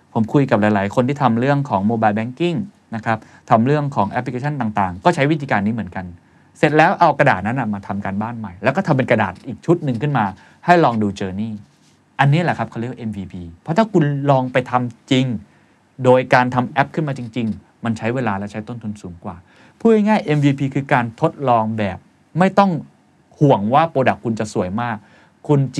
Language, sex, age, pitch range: Thai, male, 20-39, 105-135 Hz